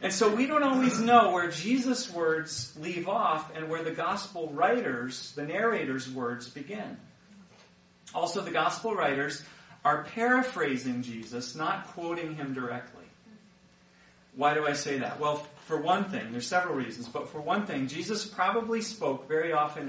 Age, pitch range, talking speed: 40-59, 150-220 Hz, 155 wpm